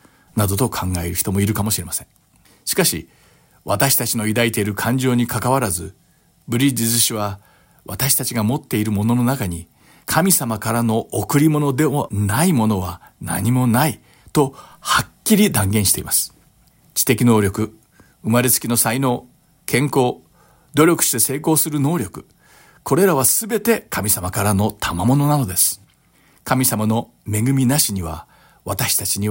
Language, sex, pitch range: English, male, 105-140 Hz